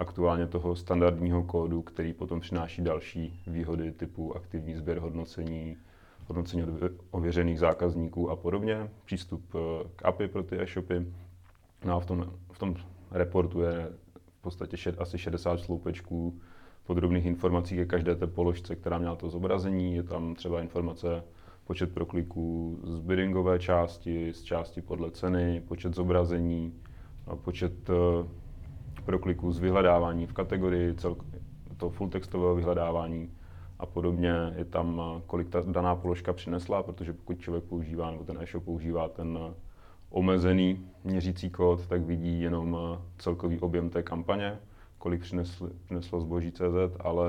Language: Czech